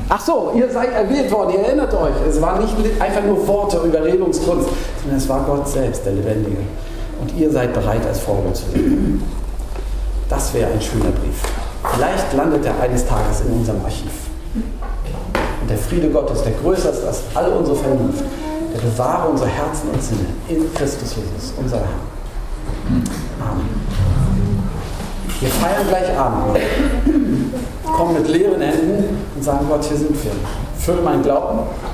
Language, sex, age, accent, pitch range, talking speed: German, male, 50-69, German, 105-160 Hz, 160 wpm